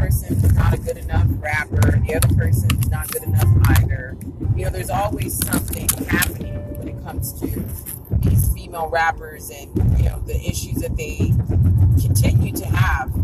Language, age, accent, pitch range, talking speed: English, 30-49, American, 100-120 Hz, 170 wpm